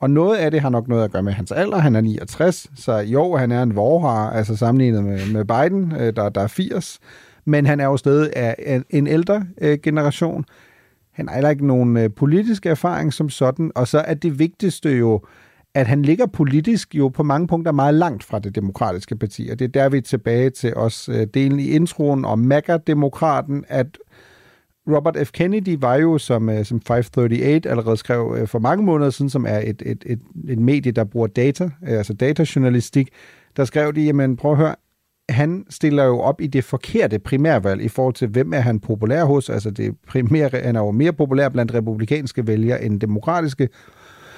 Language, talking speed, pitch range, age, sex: Danish, 195 wpm, 115-155 Hz, 40-59, male